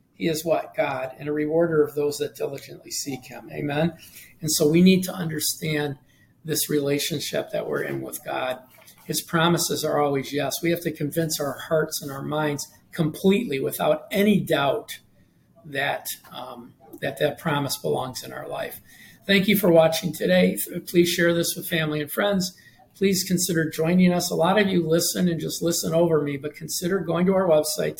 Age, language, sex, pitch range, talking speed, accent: 50-69, English, male, 145-170 Hz, 185 wpm, American